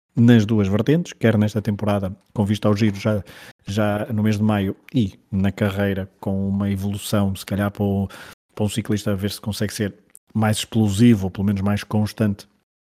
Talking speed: 185 wpm